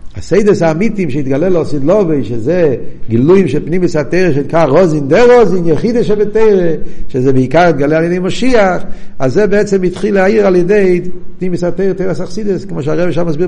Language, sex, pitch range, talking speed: Hebrew, male, 130-180 Hz, 160 wpm